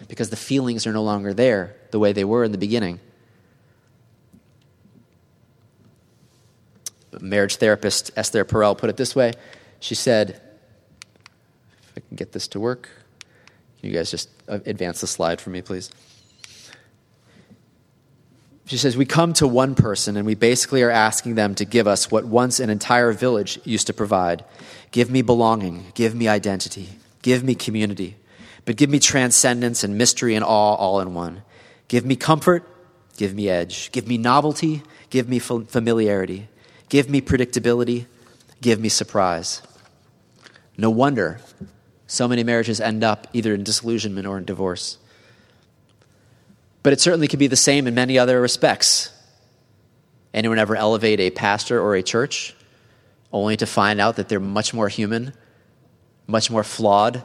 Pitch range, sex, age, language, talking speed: 105-125 Hz, male, 30-49, English, 155 wpm